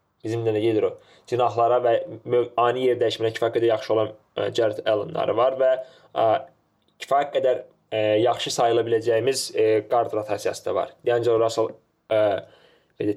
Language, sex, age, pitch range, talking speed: English, male, 20-39, 115-155 Hz, 125 wpm